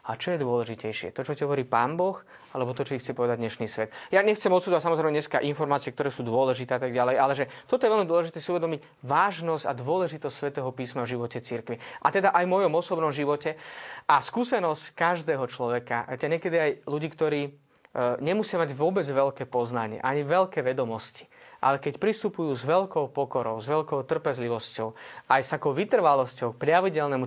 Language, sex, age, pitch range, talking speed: Slovak, male, 20-39, 135-175 Hz, 185 wpm